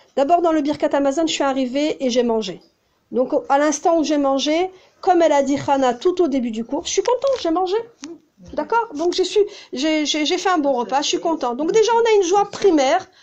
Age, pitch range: 40-59, 260-345 Hz